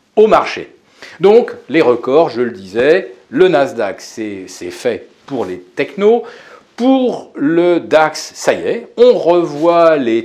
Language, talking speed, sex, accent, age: French, 145 wpm, male, French, 50-69